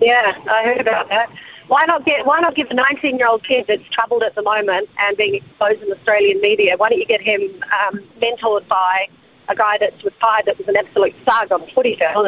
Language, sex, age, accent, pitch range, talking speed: English, female, 30-49, Australian, 210-285 Hz, 220 wpm